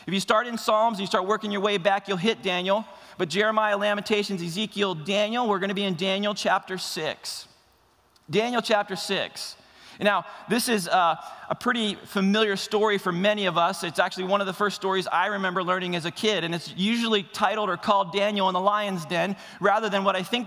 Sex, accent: male, American